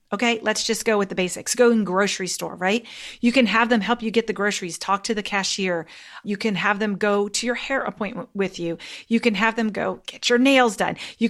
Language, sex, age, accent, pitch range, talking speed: English, female, 40-59, American, 195-240 Hz, 245 wpm